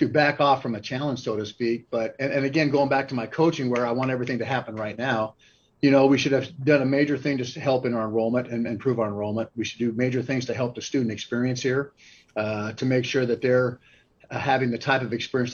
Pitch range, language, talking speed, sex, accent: 120-140 Hz, English, 265 wpm, male, American